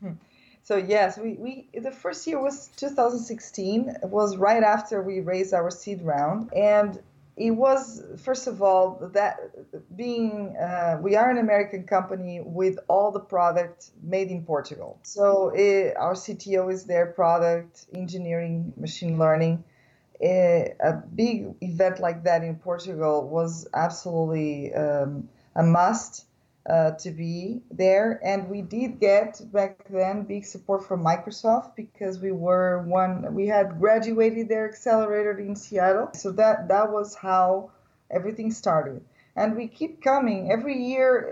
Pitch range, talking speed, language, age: 175-220 Hz, 145 wpm, English, 20-39